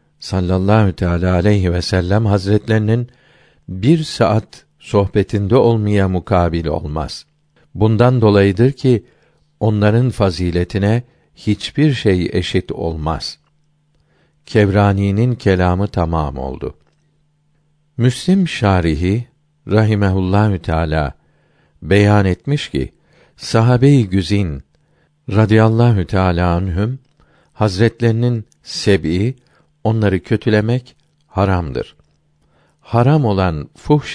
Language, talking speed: Turkish, 80 wpm